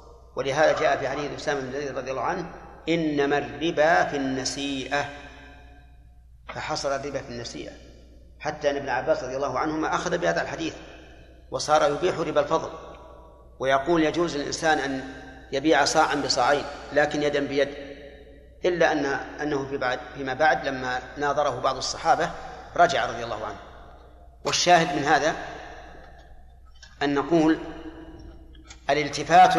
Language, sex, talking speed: Arabic, male, 125 wpm